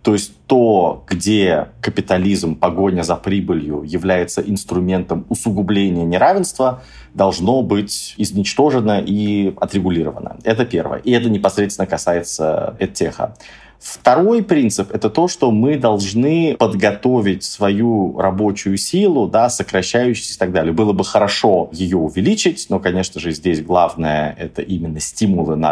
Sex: male